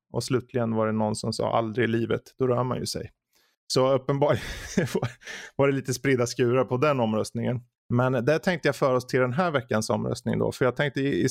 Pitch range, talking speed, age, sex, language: 115-135 Hz, 225 wpm, 20-39, male, Swedish